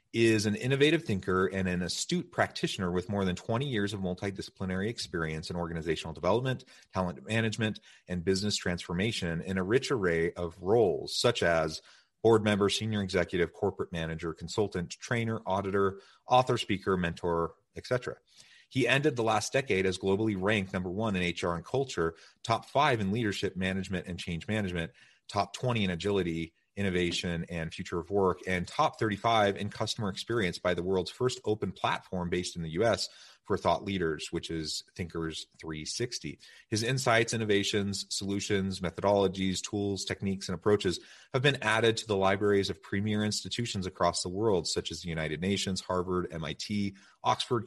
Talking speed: 160 wpm